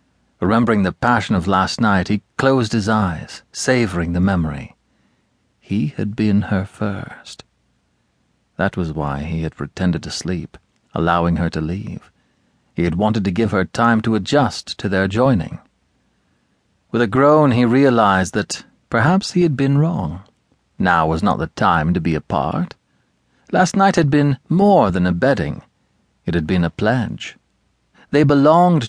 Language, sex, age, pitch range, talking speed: English, male, 40-59, 90-145 Hz, 160 wpm